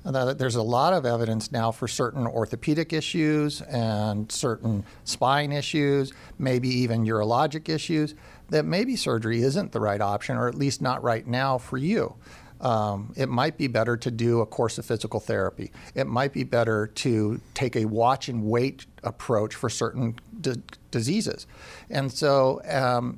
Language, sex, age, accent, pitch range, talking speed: English, male, 50-69, American, 110-145 Hz, 155 wpm